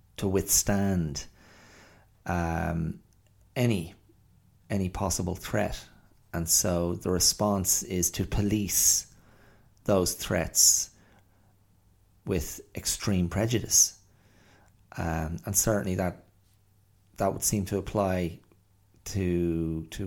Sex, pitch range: male, 90-105 Hz